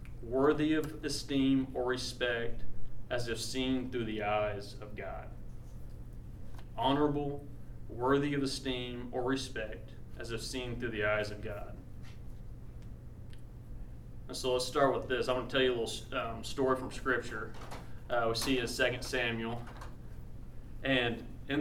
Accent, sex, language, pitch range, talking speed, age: American, male, English, 115-135 Hz, 140 wpm, 30-49